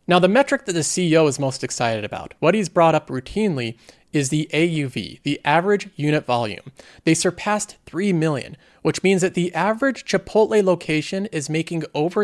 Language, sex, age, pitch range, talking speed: English, male, 30-49, 135-180 Hz, 170 wpm